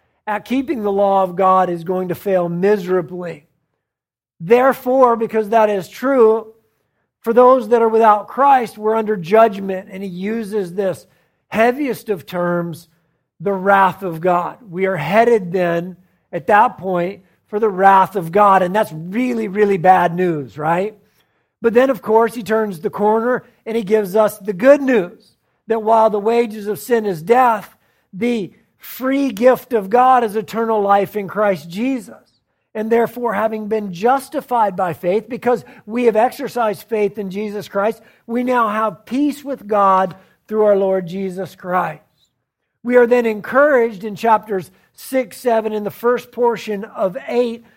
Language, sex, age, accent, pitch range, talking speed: English, male, 40-59, American, 190-240 Hz, 160 wpm